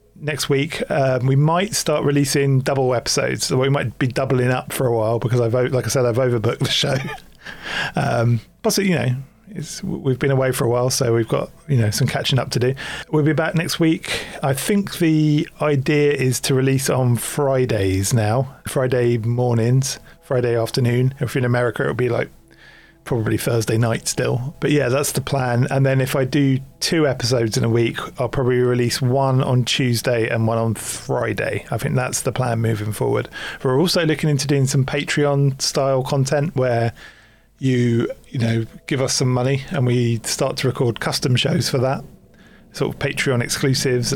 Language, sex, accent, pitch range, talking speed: English, male, British, 125-145 Hz, 195 wpm